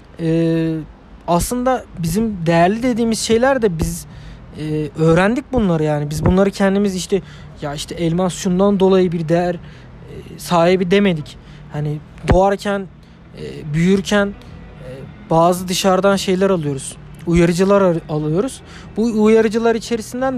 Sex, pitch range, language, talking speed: male, 160-230 Hz, Turkish, 120 wpm